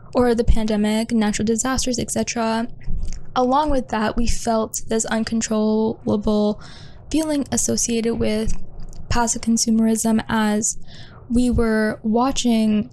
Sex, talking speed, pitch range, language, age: female, 100 wpm, 215-235 Hz, English, 10-29